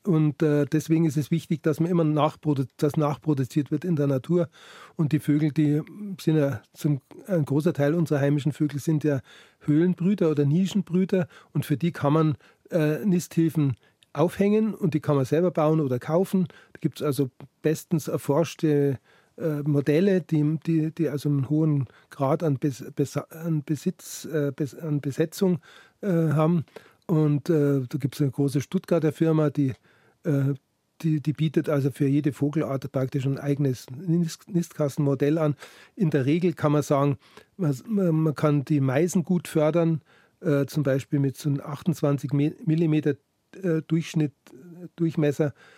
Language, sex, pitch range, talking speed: German, male, 145-165 Hz, 160 wpm